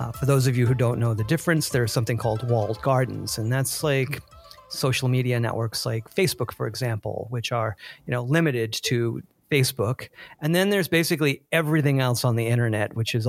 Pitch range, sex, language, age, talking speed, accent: 120-160 Hz, male, English, 40-59, 195 wpm, American